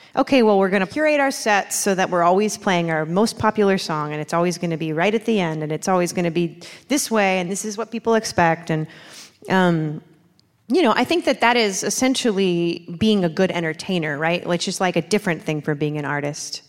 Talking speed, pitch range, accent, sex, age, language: 235 wpm, 165-200 Hz, American, female, 30-49, English